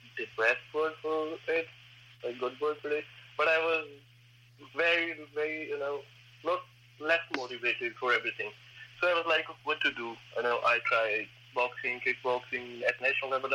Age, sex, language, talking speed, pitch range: 20-39, male, English, 170 wpm, 120-140 Hz